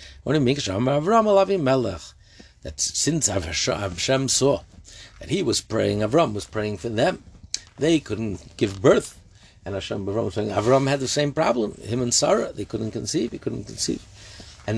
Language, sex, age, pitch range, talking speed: English, male, 60-79, 95-120 Hz, 150 wpm